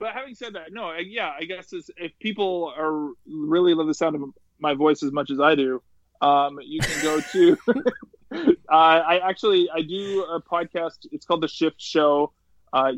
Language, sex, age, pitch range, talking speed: English, male, 20-39, 140-175 Hz, 195 wpm